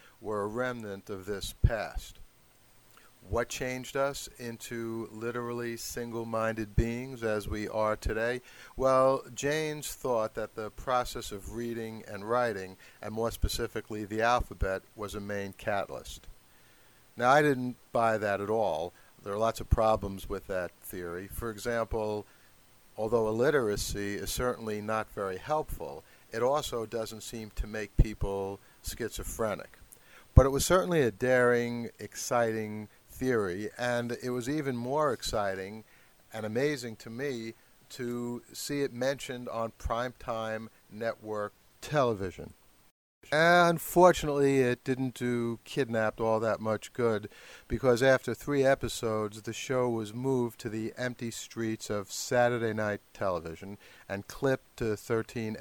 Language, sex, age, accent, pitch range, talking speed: English, male, 60-79, American, 105-125 Hz, 135 wpm